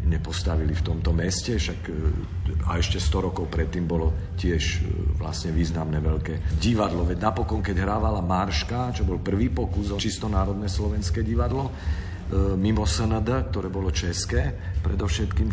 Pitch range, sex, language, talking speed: 80-105 Hz, male, Slovak, 135 wpm